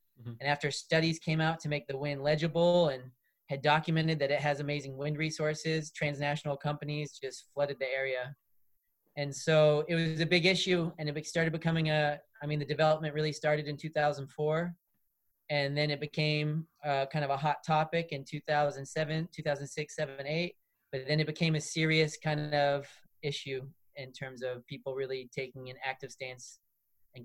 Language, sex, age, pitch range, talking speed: English, male, 30-49, 135-155 Hz, 175 wpm